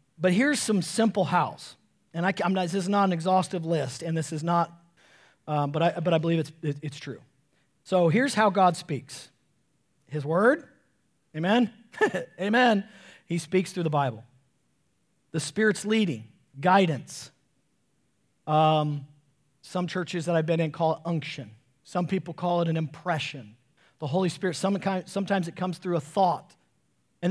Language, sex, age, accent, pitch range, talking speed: English, male, 40-59, American, 160-210 Hz, 165 wpm